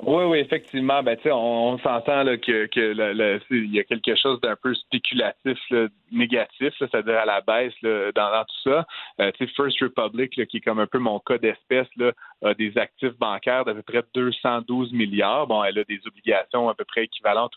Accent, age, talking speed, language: Canadian, 30-49, 220 wpm, French